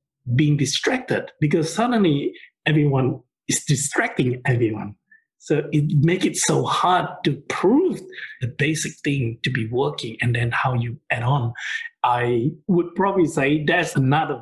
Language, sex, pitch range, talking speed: English, male, 125-165 Hz, 140 wpm